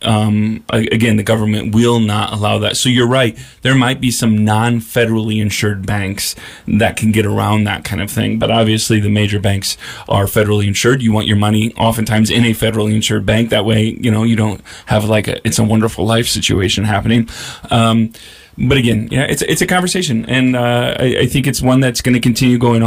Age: 30-49